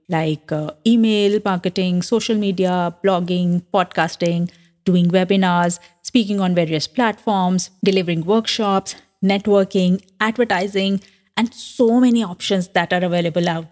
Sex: female